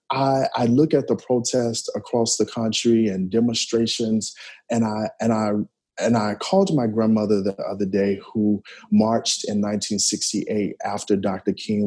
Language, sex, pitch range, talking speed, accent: English, male, 105-120 Hz, 150 wpm, American